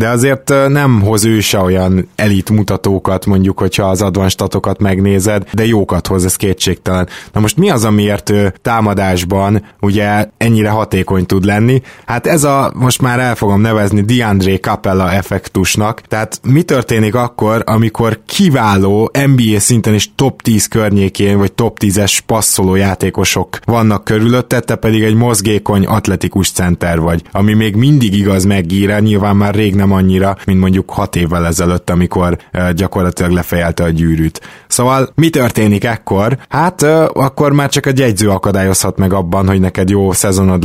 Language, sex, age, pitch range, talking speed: Hungarian, male, 20-39, 95-115 Hz, 160 wpm